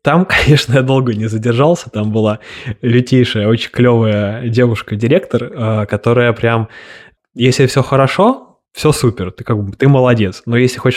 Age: 20-39